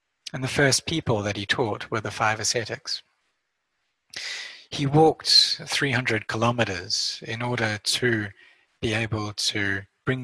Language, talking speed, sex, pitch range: English, 130 wpm, male, 110-130 Hz